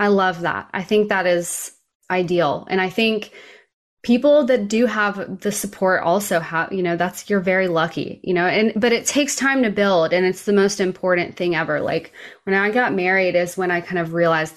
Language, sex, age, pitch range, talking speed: English, female, 20-39, 165-195 Hz, 215 wpm